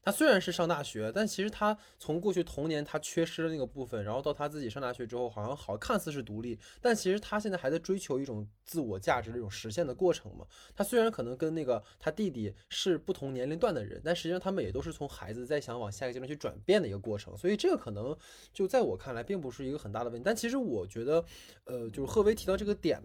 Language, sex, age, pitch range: Chinese, male, 20-39, 120-190 Hz